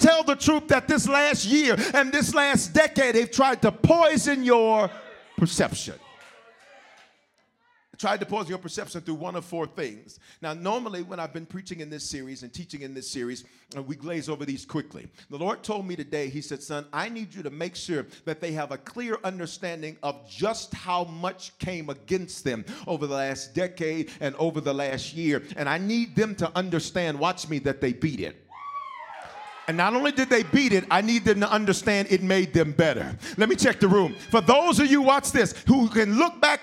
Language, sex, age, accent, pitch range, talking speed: English, male, 40-59, American, 155-255 Hz, 205 wpm